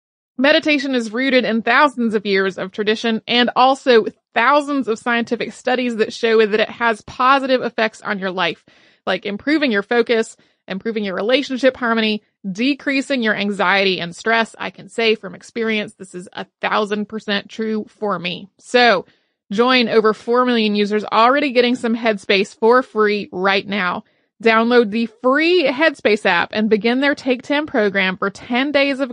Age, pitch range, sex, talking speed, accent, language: 30-49, 210-255 Hz, female, 165 wpm, American, English